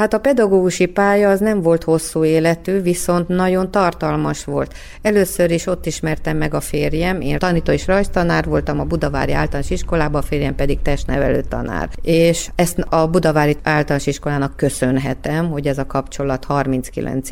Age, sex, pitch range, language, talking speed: 30-49, female, 140-170 Hz, Hungarian, 155 wpm